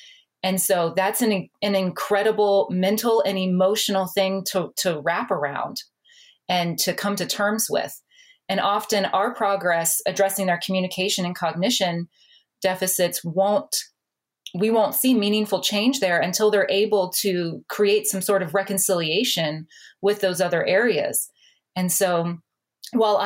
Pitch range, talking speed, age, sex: 175-205 Hz, 135 wpm, 30-49, female